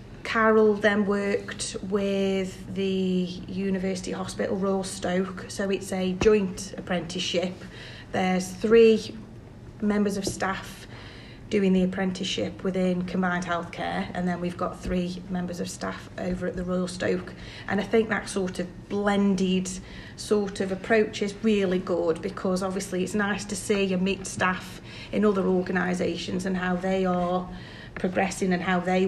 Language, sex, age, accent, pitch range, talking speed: English, female, 30-49, British, 180-205 Hz, 145 wpm